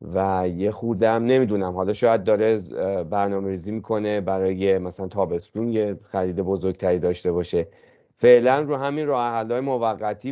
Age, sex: 30-49, male